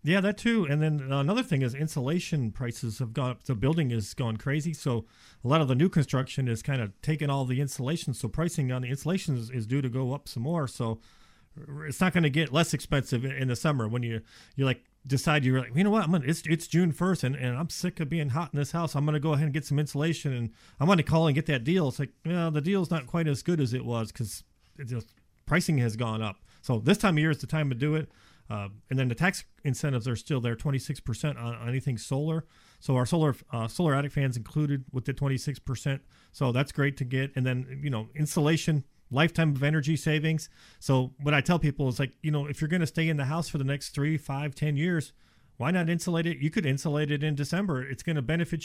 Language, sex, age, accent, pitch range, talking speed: English, male, 40-59, American, 130-160 Hz, 250 wpm